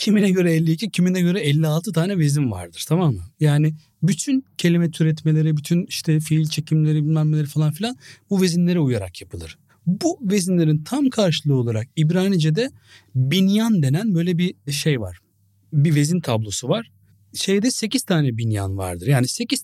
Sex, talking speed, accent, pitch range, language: male, 155 wpm, native, 105-170 Hz, Turkish